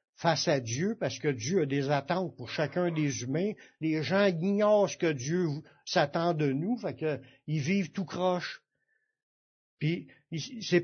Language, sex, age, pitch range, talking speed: French, male, 60-79, 155-205 Hz, 165 wpm